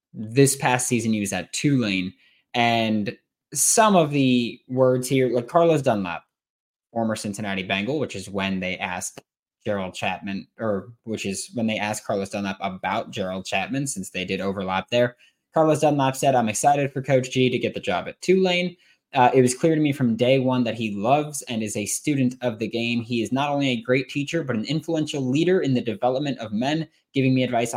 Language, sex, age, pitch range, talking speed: English, male, 20-39, 105-135 Hz, 205 wpm